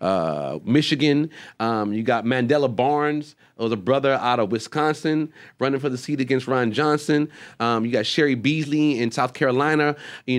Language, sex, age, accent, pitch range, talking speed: English, male, 30-49, American, 125-170 Hz, 170 wpm